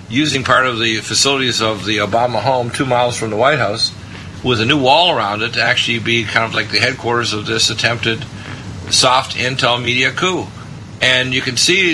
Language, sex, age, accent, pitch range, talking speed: English, male, 50-69, American, 105-125 Hz, 200 wpm